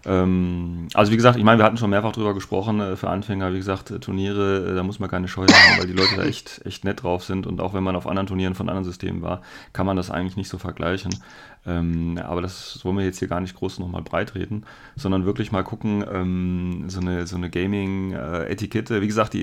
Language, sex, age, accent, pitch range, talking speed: German, male, 30-49, German, 90-115 Hz, 230 wpm